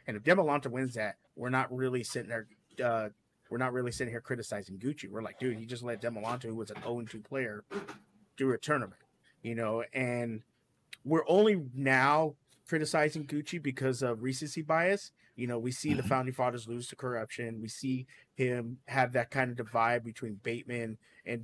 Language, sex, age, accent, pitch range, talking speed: English, male, 30-49, American, 120-140 Hz, 190 wpm